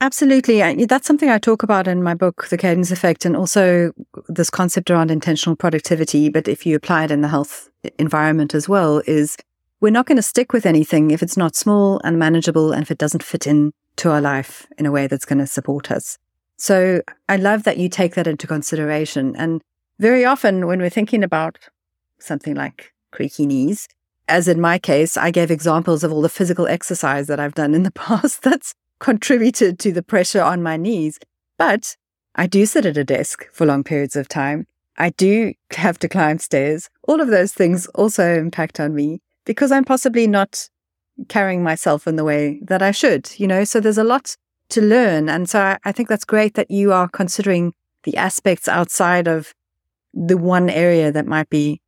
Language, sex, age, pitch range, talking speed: English, female, 40-59, 155-200 Hz, 200 wpm